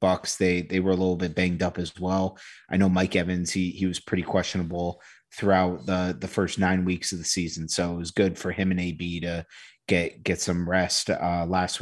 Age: 30-49